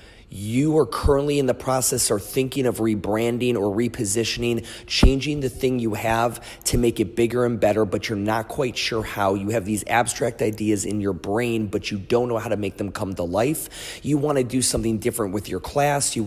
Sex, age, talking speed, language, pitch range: male, 30-49, 215 wpm, English, 100-120 Hz